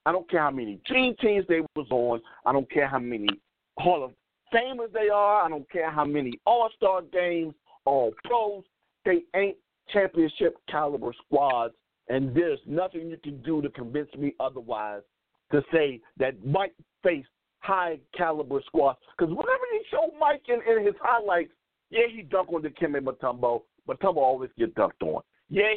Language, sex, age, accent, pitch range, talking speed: English, male, 50-69, American, 150-225 Hz, 170 wpm